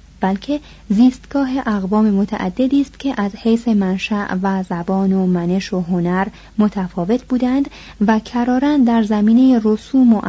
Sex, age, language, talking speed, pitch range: female, 30-49, Persian, 135 wpm, 185-235 Hz